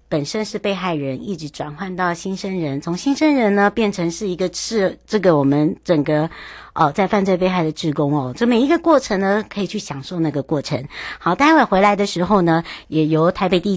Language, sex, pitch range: Chinese, male, 155-205 Hz